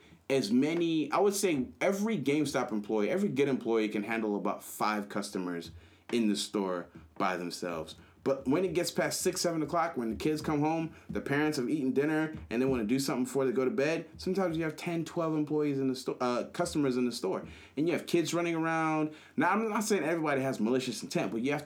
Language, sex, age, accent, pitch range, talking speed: English, male, 30-49, American, 105-155 Hz, 220 wpm